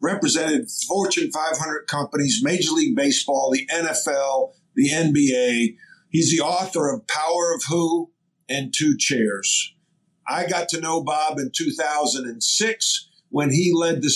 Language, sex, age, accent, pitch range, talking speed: English, male, 50-69, American, 130-175 Hz, 135 wpm